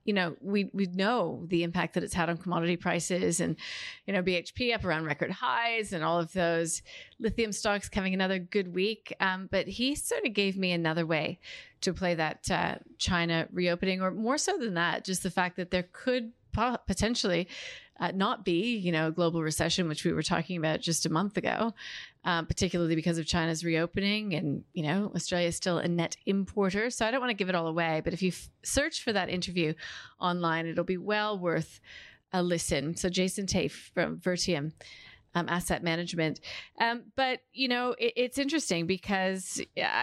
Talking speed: 195 wpm